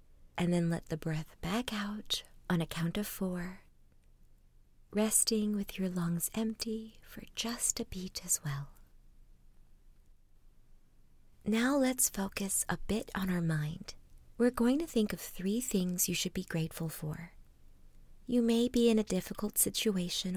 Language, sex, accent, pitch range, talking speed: English, female, American, 160-220 Hz, 145 wpm